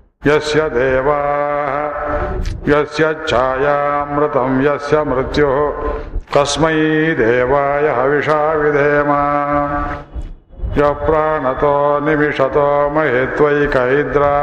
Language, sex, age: Kannada, male, 60-79